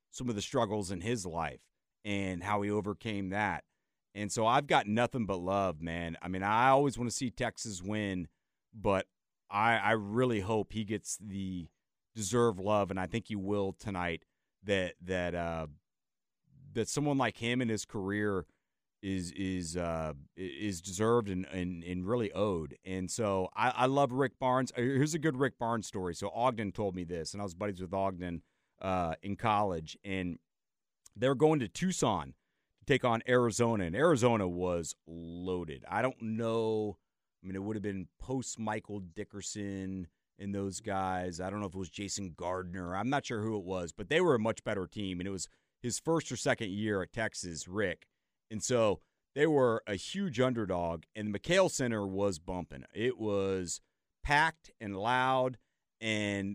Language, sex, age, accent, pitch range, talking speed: English, male, 30-49, American, 95-115 Hz, 180 wpm